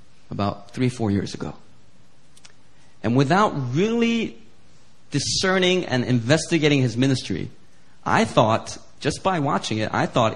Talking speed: 120 wpm